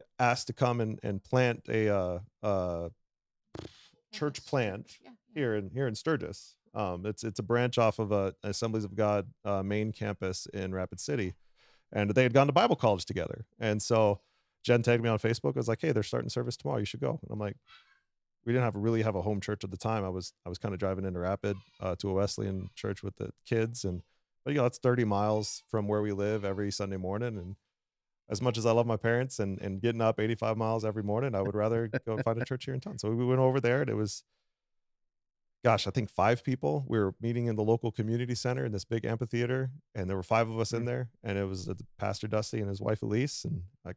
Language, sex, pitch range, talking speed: English, male, 100-120 Hz, 240 wpm